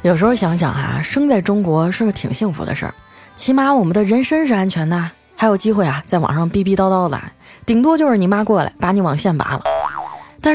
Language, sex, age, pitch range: Chinese, female, 20-39, 160-225 Hz